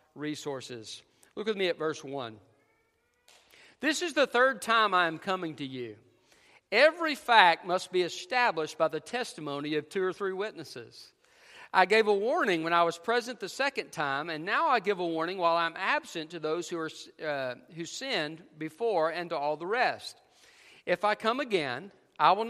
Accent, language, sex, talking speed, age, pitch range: American, English, male, 185 wpm, 50-69, 160-235 Hz